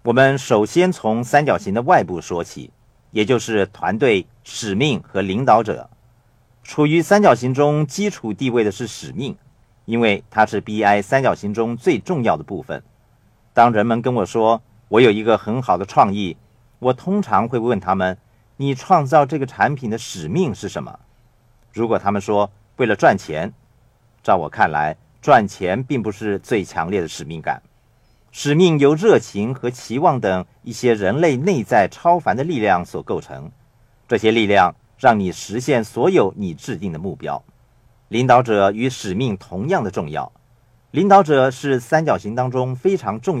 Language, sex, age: Chinese, male, 50-69